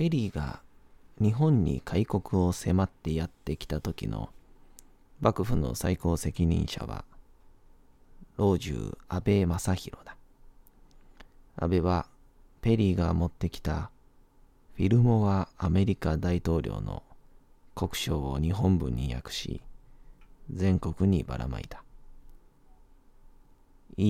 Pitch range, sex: 85-110 Hz, male